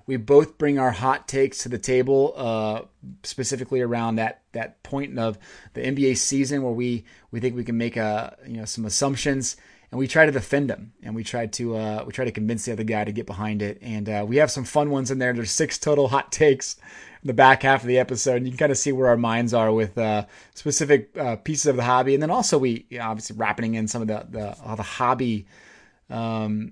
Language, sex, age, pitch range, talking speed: English, male, 30-49, 110-135 Hz, 245 wpm